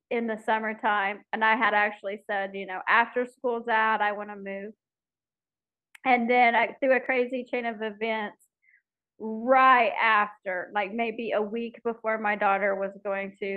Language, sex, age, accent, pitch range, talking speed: English, female, 40-59, American, 210-275 Hz, 160 wpm